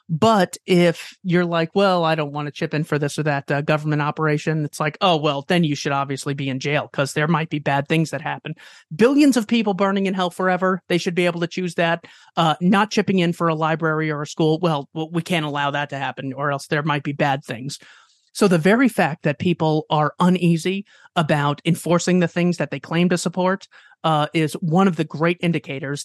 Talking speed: 230 wpm